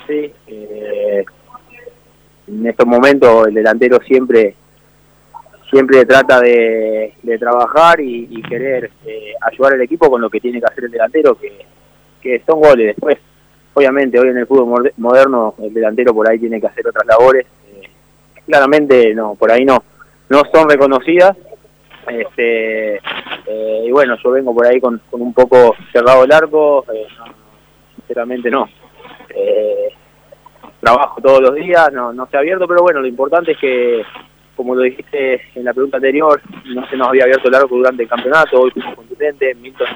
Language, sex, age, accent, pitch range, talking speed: Spanish, male, 20-39, Argentinian, 120-165 Hz, 170 wpm